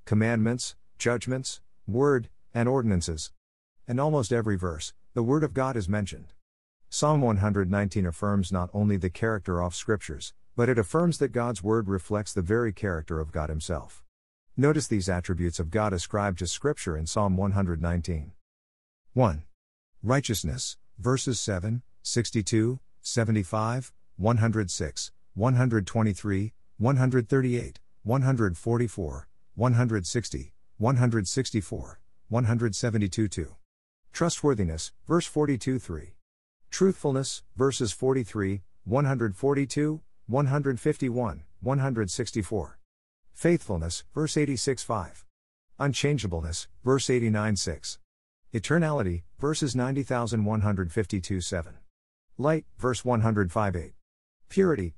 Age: 50-69